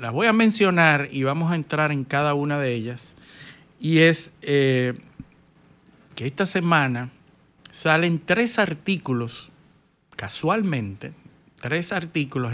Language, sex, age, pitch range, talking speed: Spanish, male, 60-79, 130-160 Hz, 120 wpm